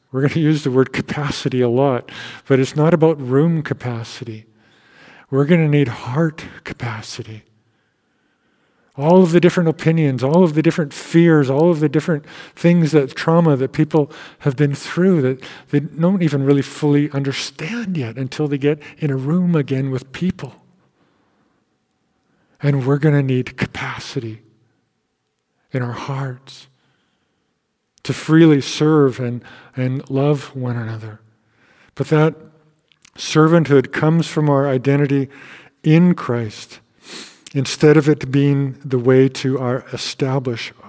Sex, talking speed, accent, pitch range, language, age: male, 140 wpm, American, 130-155 Hz, English, 50-69